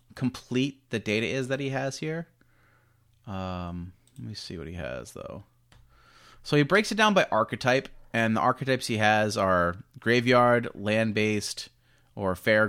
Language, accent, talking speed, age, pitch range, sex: English, American, 155 wpm, 30-49, 100-125 Hz, male